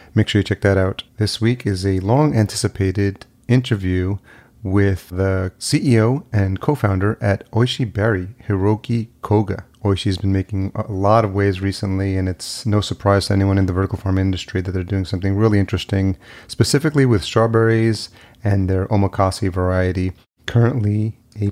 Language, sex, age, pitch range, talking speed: English, male, 30-49, 95-110 Hz, 155 wpm